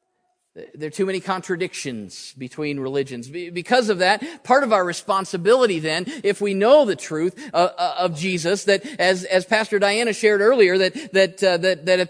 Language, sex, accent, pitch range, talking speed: English, male, American, 140-230 Hz, 170 wpm